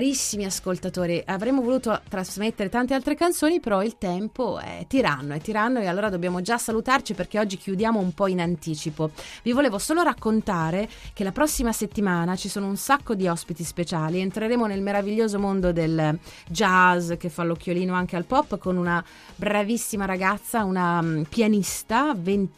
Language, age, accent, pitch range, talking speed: Italian, 30-49, native, 170-215 Hz, 160 wpm